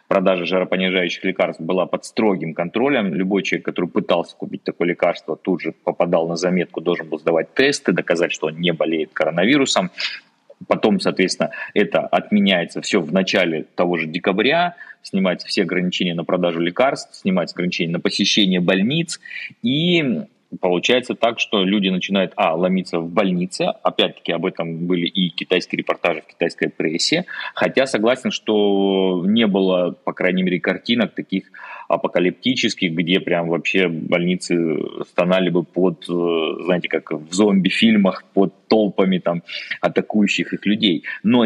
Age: 30-49